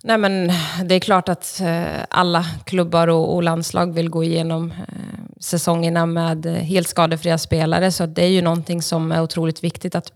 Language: Swedish